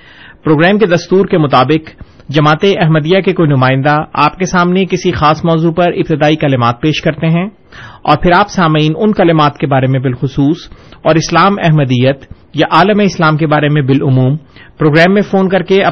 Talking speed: 175 wpm